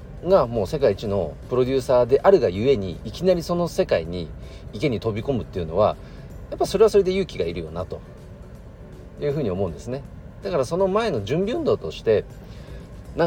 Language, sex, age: Japanese, male, 40-59